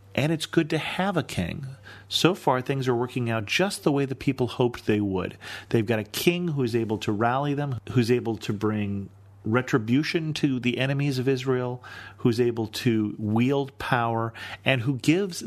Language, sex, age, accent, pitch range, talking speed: English, male, 40-59, American, 105-130 Hz, 185 wpm